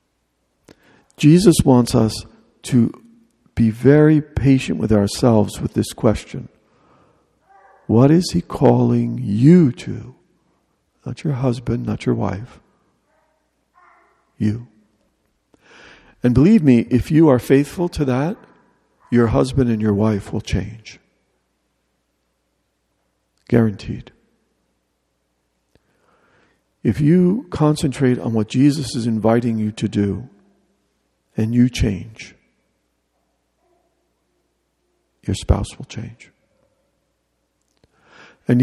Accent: American